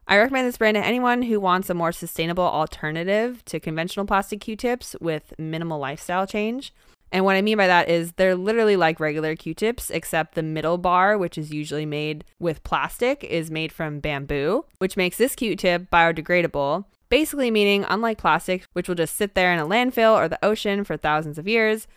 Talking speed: 190 wpm